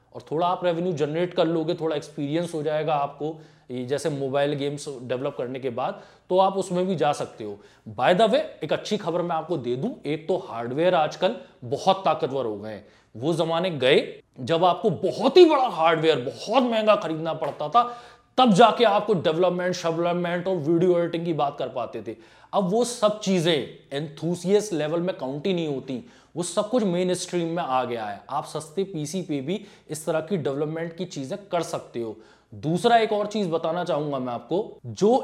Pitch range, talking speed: 145-190 Hz, 160 wpm